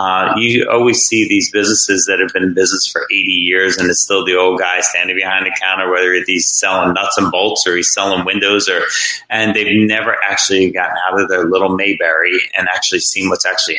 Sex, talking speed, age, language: male, 220 wpm, 30-49, English